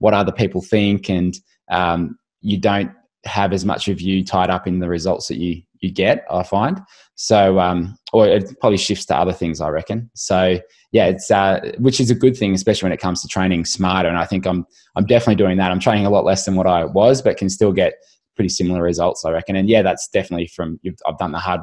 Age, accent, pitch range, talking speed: 20-39, Australian, 90-100 Hz, 240 wpm